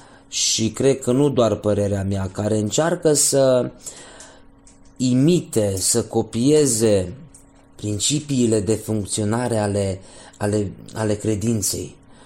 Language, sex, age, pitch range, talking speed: Romanian, male, 30-49, 95-120 Hz, 100 wpm